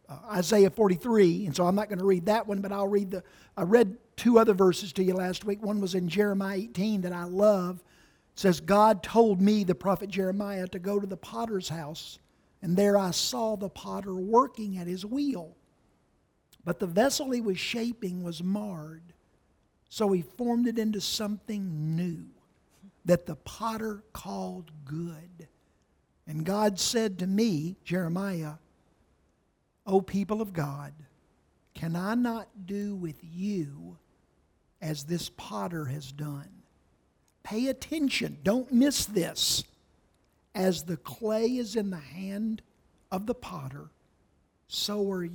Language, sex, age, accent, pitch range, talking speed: English, male, 60-79, American, 170-210 Hz, 150 wpm